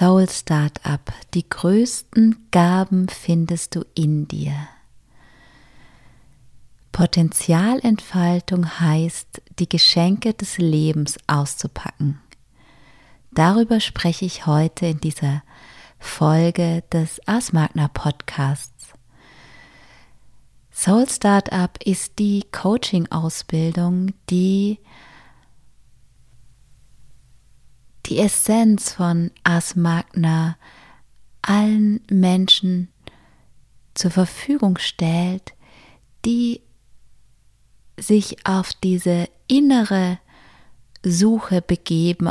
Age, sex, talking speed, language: 20-39, female, 70 wpm, German